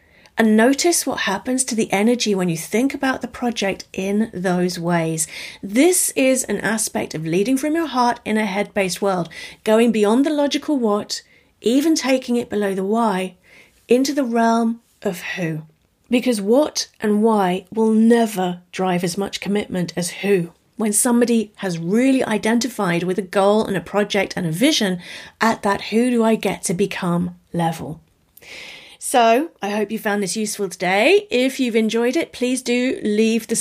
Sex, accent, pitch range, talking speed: female, British, 190-240 Hz, 170 wpm